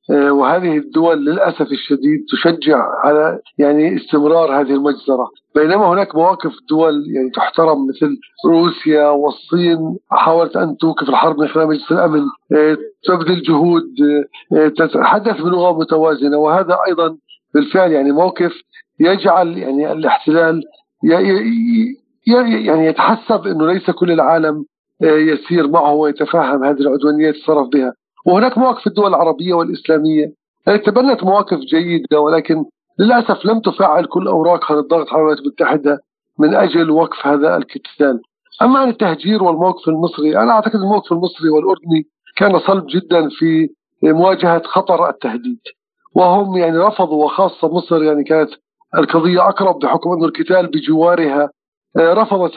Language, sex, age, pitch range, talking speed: Arabic, male, 40-59, 150-185 Hz, 120 wpm